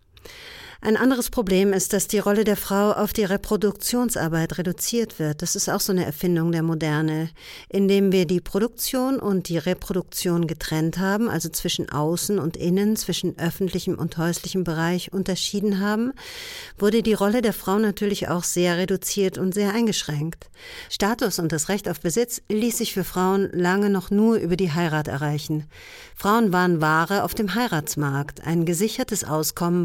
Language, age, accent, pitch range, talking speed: German, 50-69, German, 165-210 Hz, 165 wpm